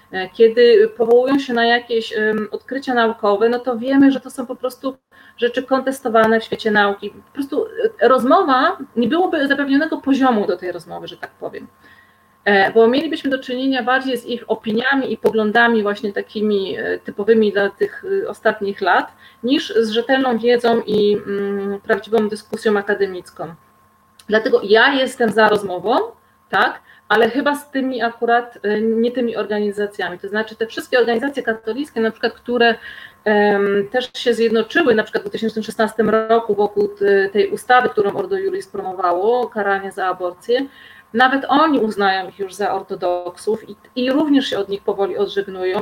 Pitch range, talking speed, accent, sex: 210-255 Hz, 150 wpm, native, female